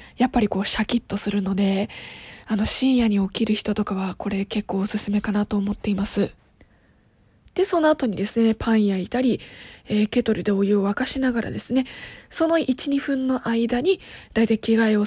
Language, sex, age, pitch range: Japanese, female, 20-39, 205-260 Hz